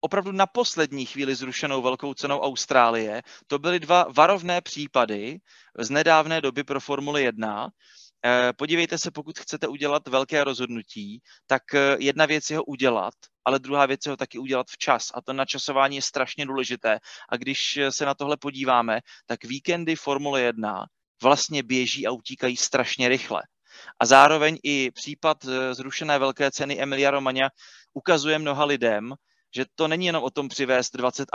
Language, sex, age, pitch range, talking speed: Slovak, male, 30-49, 130-150 Hz, 155 wpm